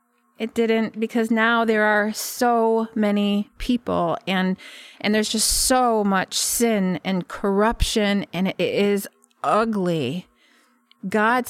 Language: English